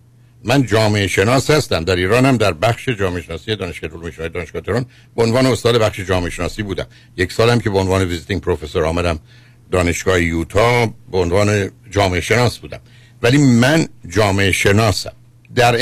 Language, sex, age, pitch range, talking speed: Persian, male, 60-79, 95-120 Hz, 165 wpm